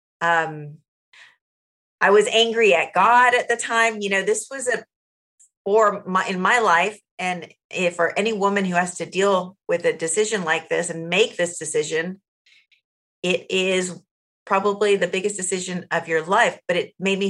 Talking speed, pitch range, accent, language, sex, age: 175 wpm, 170-210 Hz, American, English, female, 40-59